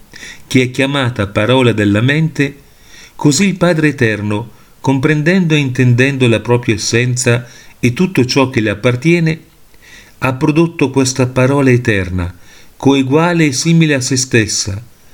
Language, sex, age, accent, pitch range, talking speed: Italian, male, 40-59, native, 110-135 Hz, 130 wpm